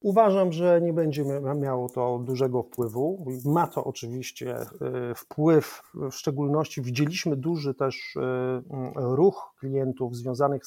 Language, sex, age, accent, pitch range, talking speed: Polish, male, 40-59, native, 125-150 Hz, 110 wpm